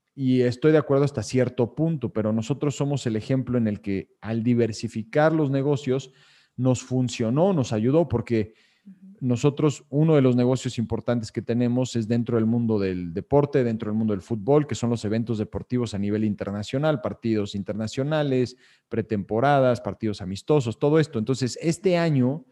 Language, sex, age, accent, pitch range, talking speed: Spanish, male, 40-59, Mexican, 110-140 Hz, 165 wpm